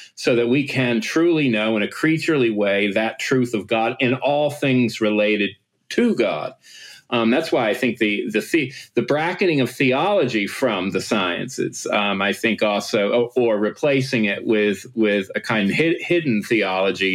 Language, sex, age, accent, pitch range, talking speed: English, male, 40-59, American, 105-130 Hz, 180 wpm